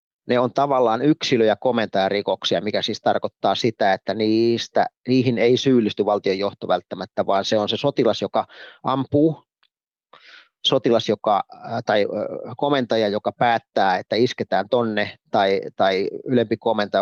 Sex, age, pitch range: male, 30-49, 105-130 Hz